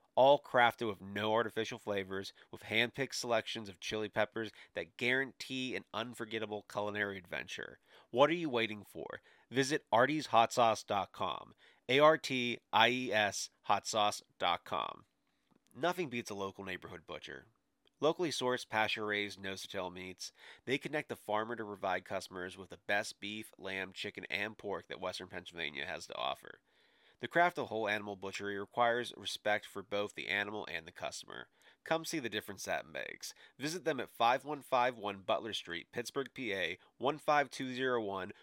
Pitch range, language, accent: 100-125 Hz, English, American